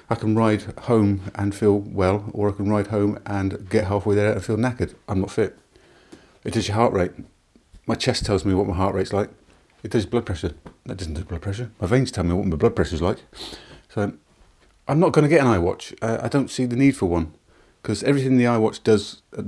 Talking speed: 235 wpm